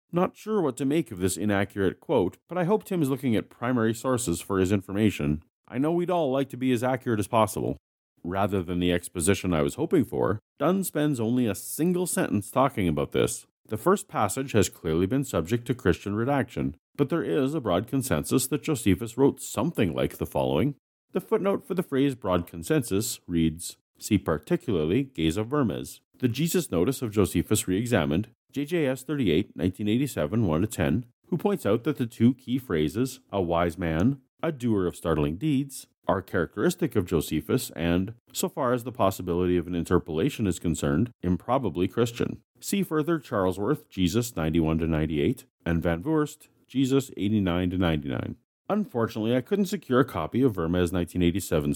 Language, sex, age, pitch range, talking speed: English, male, 40-59, 90-135 Hz, 170 wpm